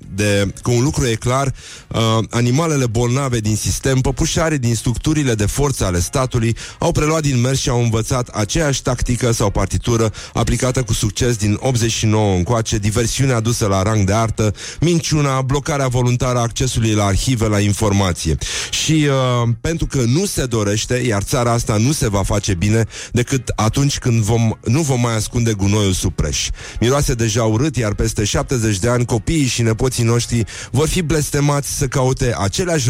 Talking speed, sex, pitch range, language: 170 wpm, male, 110-135 Hz, Romanian